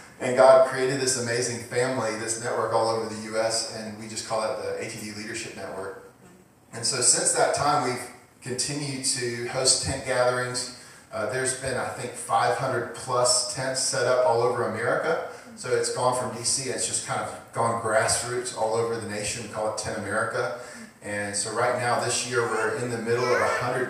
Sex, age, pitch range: male, 30-49, 110-125 Hz